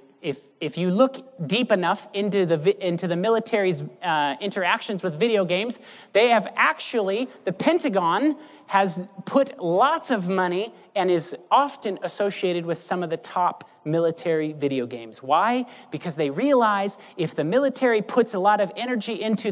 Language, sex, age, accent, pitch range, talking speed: English, male, 30-49, American, 160-225 Hz, 155 wpm